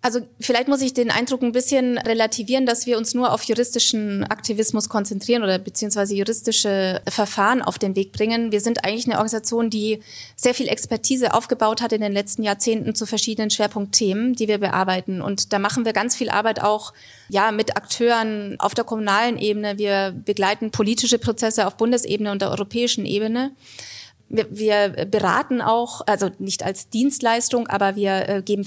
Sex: female